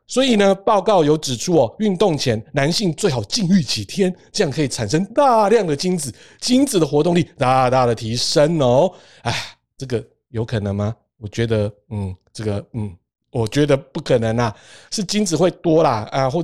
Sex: male